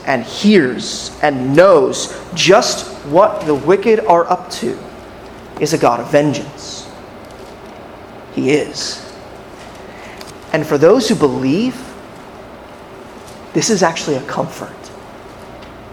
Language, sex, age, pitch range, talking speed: English, male, 30-49, 150-205 Hz, 105 wpm